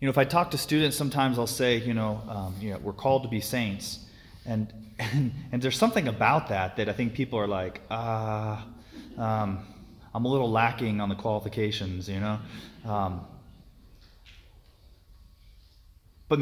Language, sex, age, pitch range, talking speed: English, male, 30-49, 100-130 Hz, 170 wpm